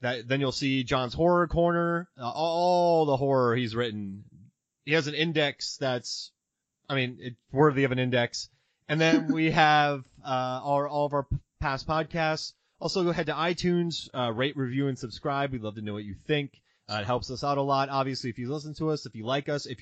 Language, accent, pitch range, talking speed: English, American, 125-160 Hz, 215 wpm